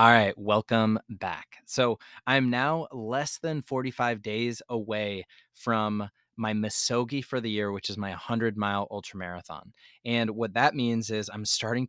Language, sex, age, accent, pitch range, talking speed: English, male, 20-39, American, 100-120 Hz, 150 wpm